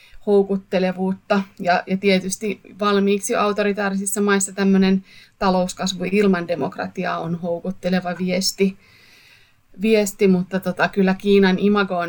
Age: 30-49